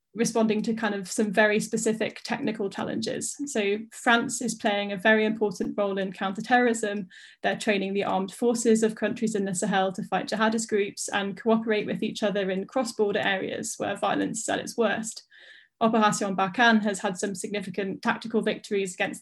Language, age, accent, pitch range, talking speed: English, 10-29, British, 205-230 Hz, 175 wpm